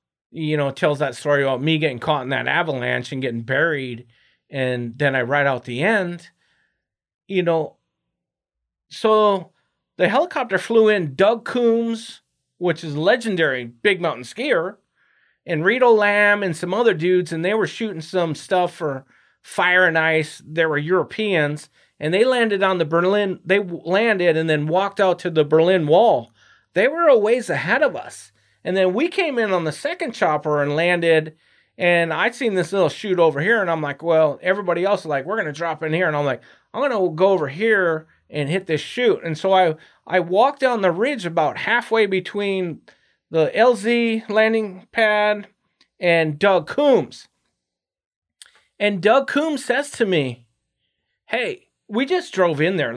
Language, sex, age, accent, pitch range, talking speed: English, male, 30-49, American, 155-205 Hz, 175 wpm